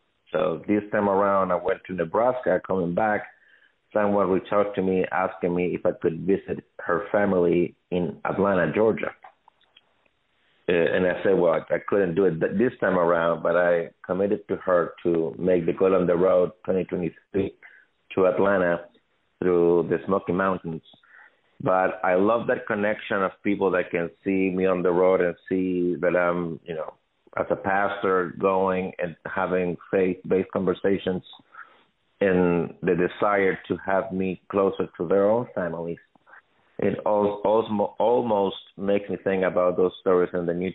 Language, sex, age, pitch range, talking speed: English, male, 50-69, 85-95 Hz, 160 wpm